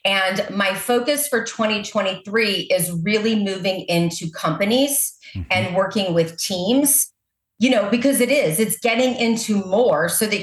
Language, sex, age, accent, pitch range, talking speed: English, female, 40-59, American, 190-250 Hz, 145 wpm